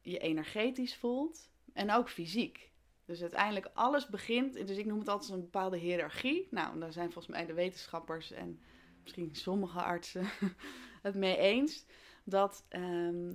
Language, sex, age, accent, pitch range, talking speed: Dutch, female, 20-39, Dutch, 165-210 Hz, 155 wpm